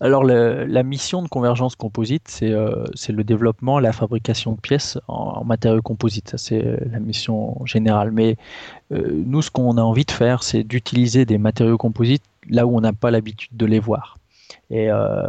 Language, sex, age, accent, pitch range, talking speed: French, male, 20-39, French, 110-130 Hz, 190 wpm